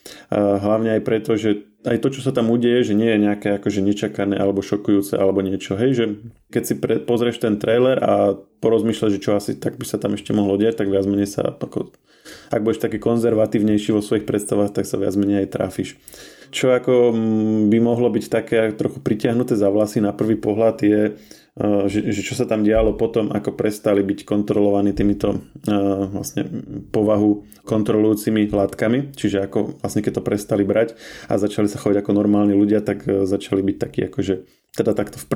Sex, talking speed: male, 185 wpm